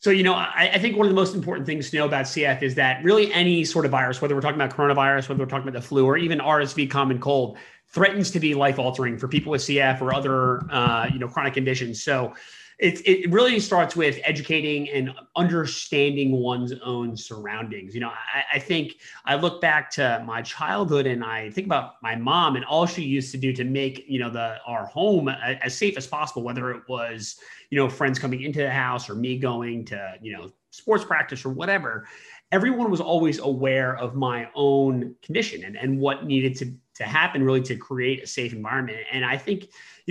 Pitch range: 130-165 Hz